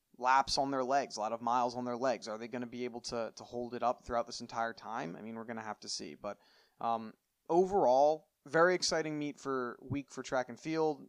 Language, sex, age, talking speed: English, male, 20-39, 250 wpm